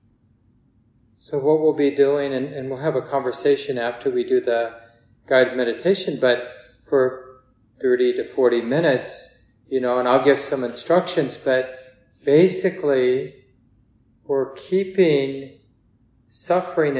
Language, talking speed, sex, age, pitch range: English, 125 wpm, male, 40-59, 115-140 Hz